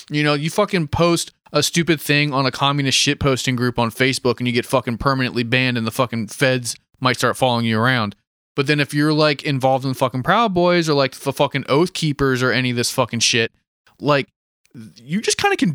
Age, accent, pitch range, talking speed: 20-39, American, 125-145 Hz, 230 wpm